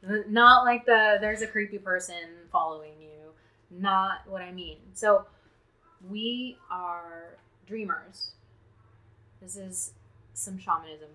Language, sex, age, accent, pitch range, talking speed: English, female, 20-39, American, 160-210 Hz, 115 wpm